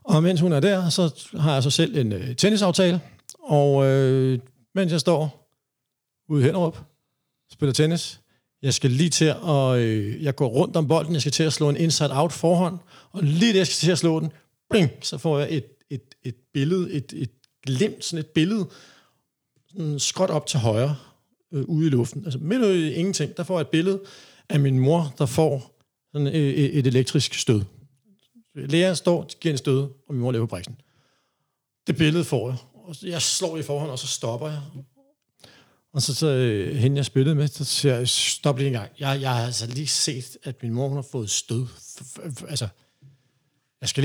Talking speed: 205 wpm